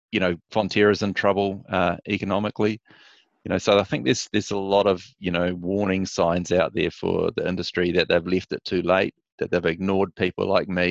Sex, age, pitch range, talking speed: male, 30-49, 90-100 Hz, 210 wpm